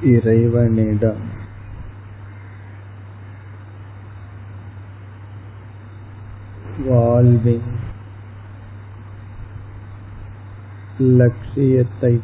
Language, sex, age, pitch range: Tamil, male, 50-69, 100-110 Hz